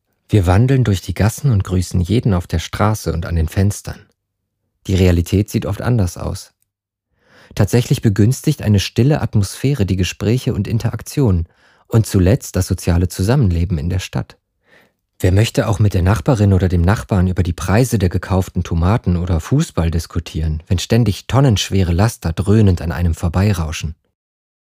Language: German